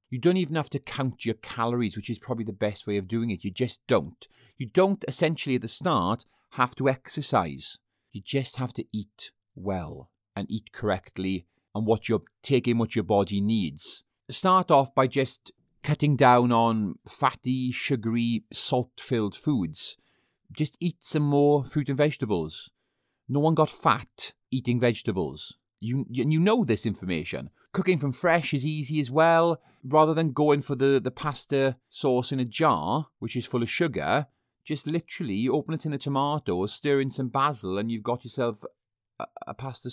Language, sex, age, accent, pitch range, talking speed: English, male, 30-49, British, 115-155 Hz, 175 wpm